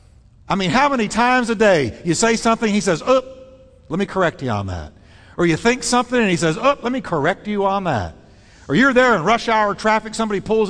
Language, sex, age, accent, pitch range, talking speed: English, male, 50-69, American, 135-215 Hz, 235 wpm